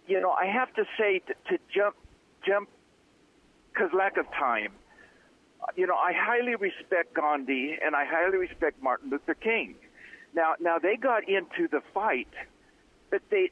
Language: English